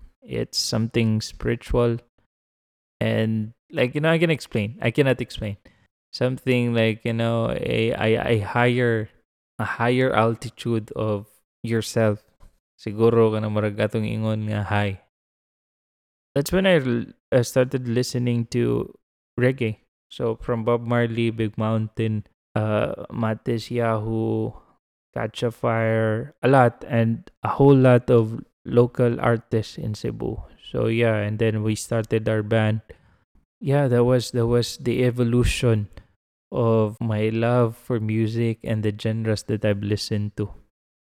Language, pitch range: Filipino, 110-125 Hz